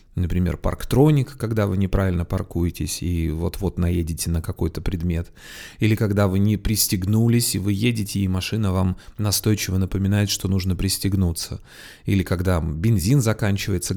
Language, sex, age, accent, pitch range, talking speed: Russian, male, 30-49, native, 95-120 Hz, 140 wpm